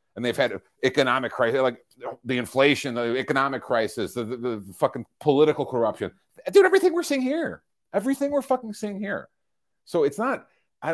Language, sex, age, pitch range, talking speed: English, male, 40-59, 115-170 Hz, 170 wpm